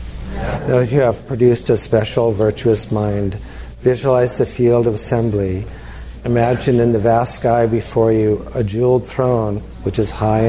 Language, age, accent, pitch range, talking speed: English, 50-69, American, 105-125 Hz, 150 wpm